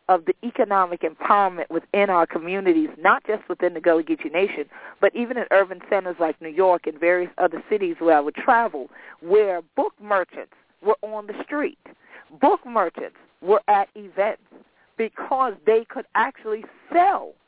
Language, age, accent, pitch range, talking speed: English, 40-59, American, 175-250 Hz, 160 wpm